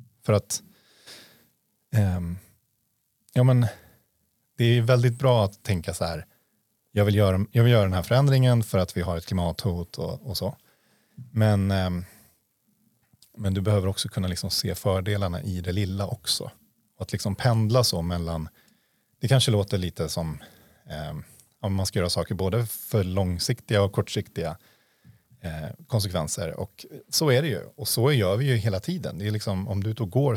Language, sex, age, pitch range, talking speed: Swedish, male, 30-49, 95-120 Hz, 160 wpm